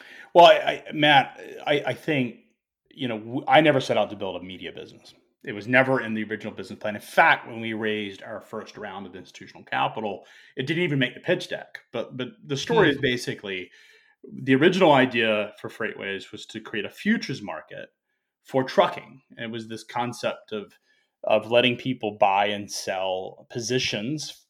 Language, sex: English, male